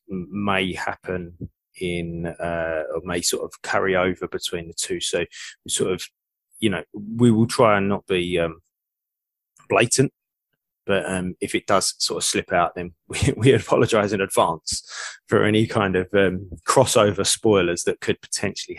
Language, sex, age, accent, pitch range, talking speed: English, male, 20-39, British, 95-115 Hz, 165 wpm